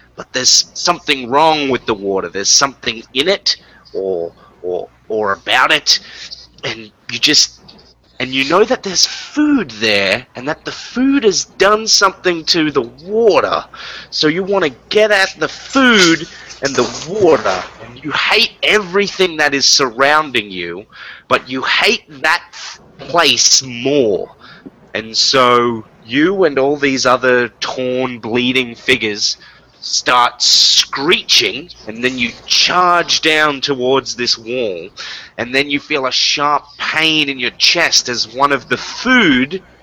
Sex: male